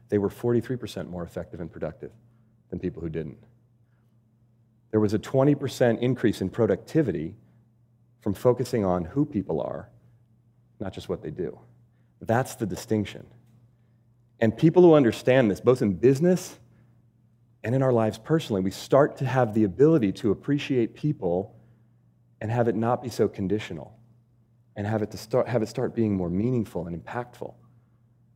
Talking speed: 155 wpm